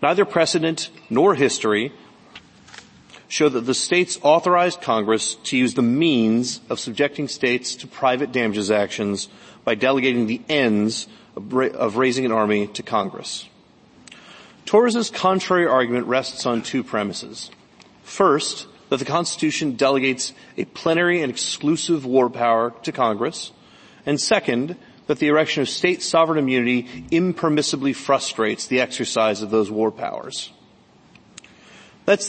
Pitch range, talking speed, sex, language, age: 120-170 Hz, 130 wpm, male, English, 40-59